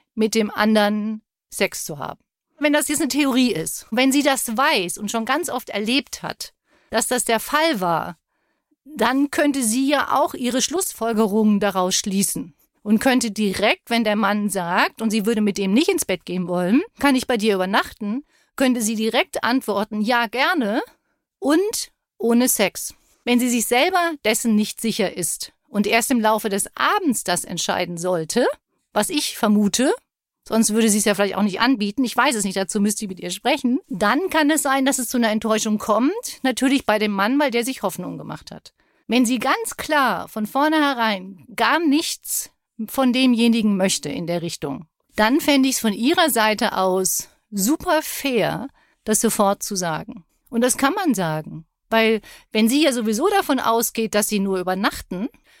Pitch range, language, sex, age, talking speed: 210-275 Hz, German, female, 40-59, 185 wpm